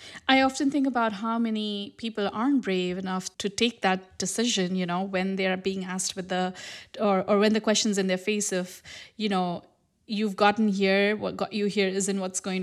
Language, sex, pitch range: English, female, 185-215 Hz